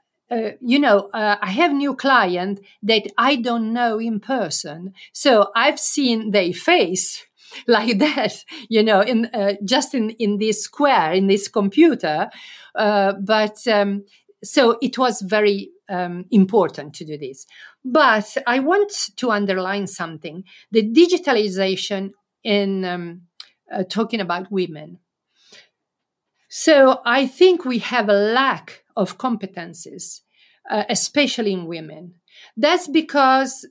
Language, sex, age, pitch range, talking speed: Czech, female, 50-69, 195-255 Hz, 130 wpm